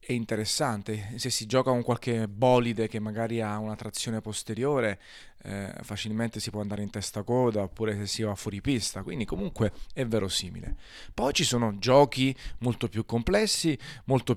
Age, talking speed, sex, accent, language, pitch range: 30-49, 165 wpm, male, native, Italian, 105-125 Hz